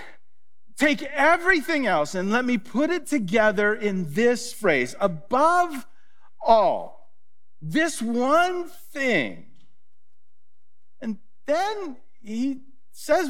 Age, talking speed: 50-69, 95 wpm